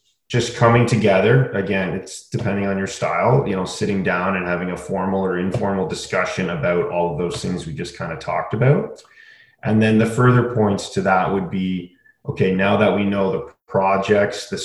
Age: 30-49